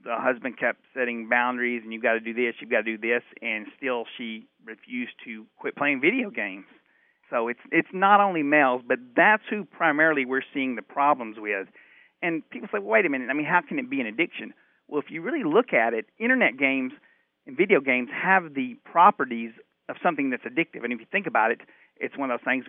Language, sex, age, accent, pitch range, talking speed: English, male, 40-59, American, 120-195 Hz, 225 wpm